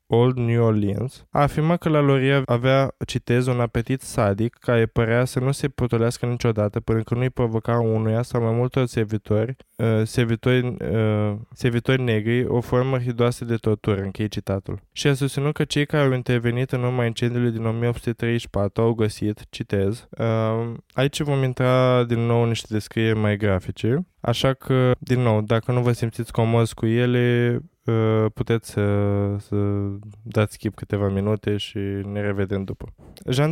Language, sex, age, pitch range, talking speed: Romanian, male, 20-39, 110-125 Hz, 165 wpm